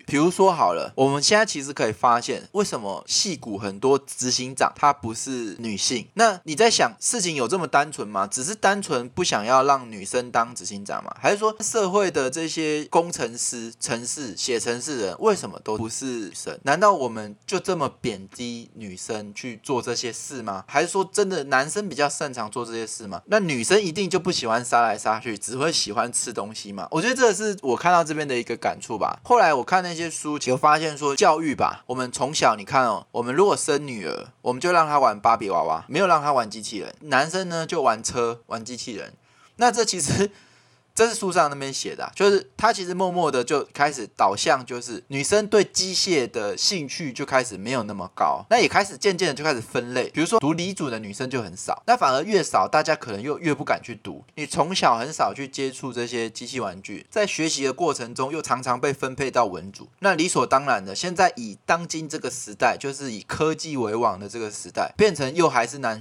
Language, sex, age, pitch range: Chinese, male, 20-39, 120-180 Hz